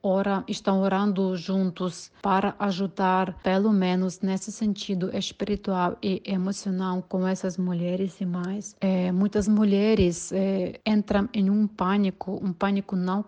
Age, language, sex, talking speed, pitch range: 30-49, Portuguese, female, 130 wpm, 180-200 Hz